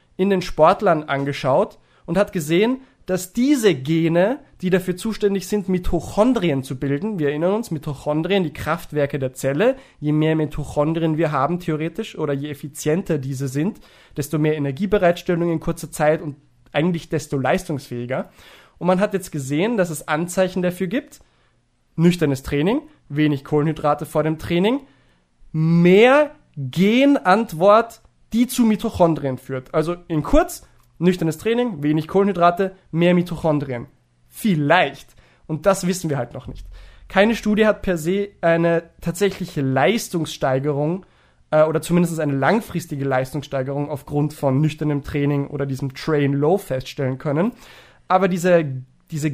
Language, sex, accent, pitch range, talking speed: German, male, German, 145-185 Hz, 135 wpm